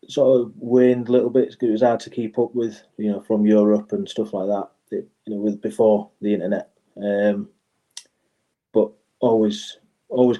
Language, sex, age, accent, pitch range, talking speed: English, male, 30-49, British, 100-110 Hz, 185 wpm